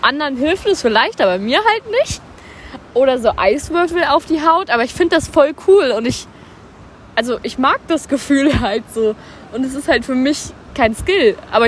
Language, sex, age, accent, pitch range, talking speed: German, female, 20-39, German, 210-275 Hz, 195 wpm